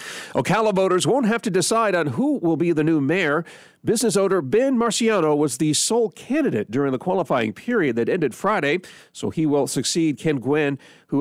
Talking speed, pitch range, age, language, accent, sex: 185 wpm, 140-195 Hz, 40-59, English, American, male